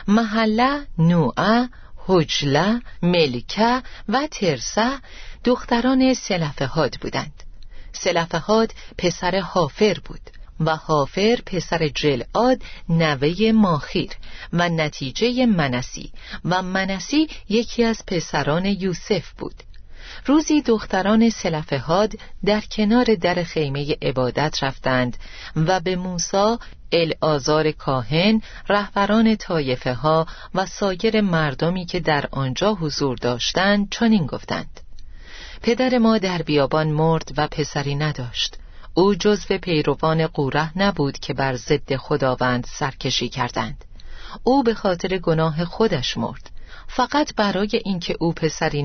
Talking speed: 105 wpm